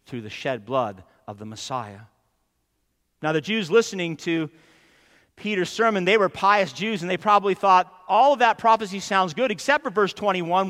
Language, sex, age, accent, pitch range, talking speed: English, male, 50-69, American, 140-220 Hz, 180 wpm